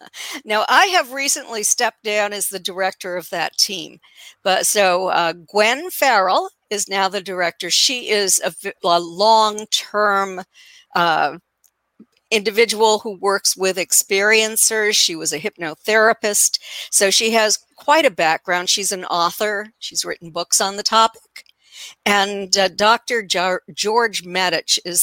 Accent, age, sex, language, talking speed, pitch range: American, 50-69, female, English, 140 wpm, 180-230 Hz